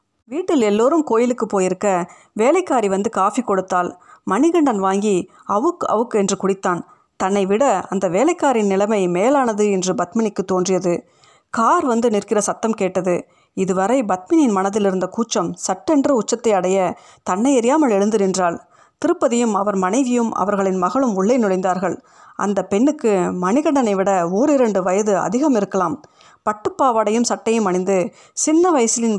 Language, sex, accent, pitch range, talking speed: Tamil, female, native, 190-260 Hz, 125 wpm